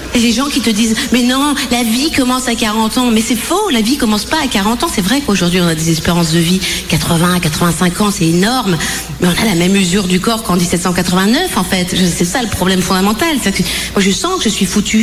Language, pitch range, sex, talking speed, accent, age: French, 185-245 Hz, female, 250 wpm, French, 50-69